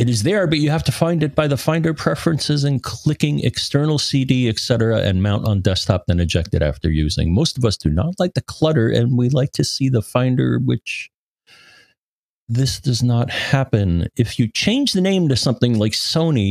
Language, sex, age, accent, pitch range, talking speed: English, male, 40-59, American, 95-130 Hz, 205 wpm